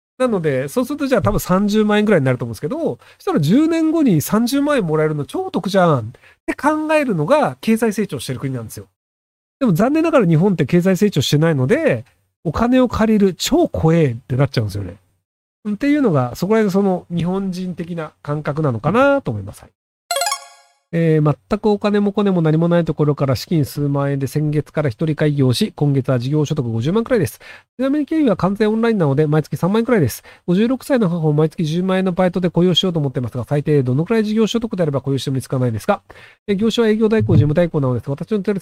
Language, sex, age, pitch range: Japanese, male, 40-59, 140-210 Hz